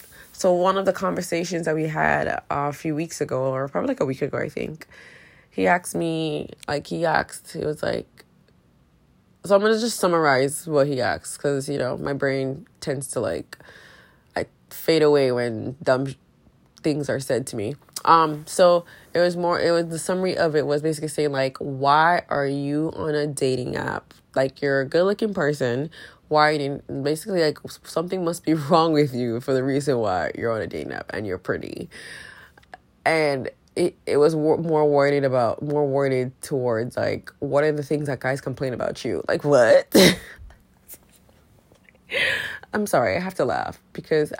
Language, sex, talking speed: English, female, 185 wpm